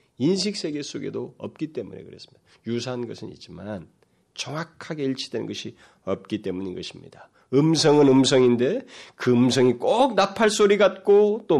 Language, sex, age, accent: Korean, male, 40-59, native